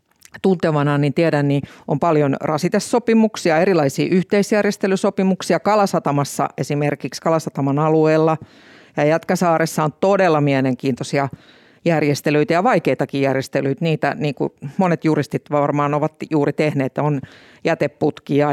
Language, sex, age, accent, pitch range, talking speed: Finnish, female, 50-69, native, 145-185 Hz, 105 wpm